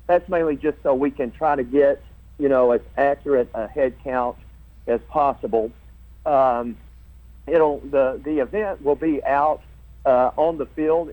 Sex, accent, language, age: male, American, English, 50-69